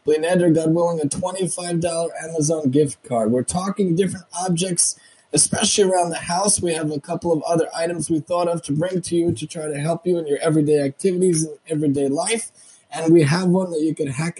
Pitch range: 135-170 Hz